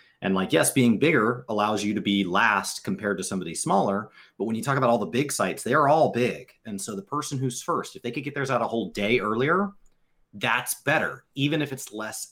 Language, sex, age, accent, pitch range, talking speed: English, male, 30-49, American, 100-135 Hz, 240 wpm